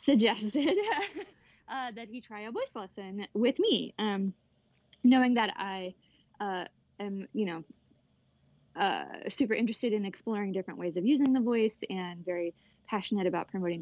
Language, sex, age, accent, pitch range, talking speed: English, female, 20-39, American, 185-225 Hz, 150 wpm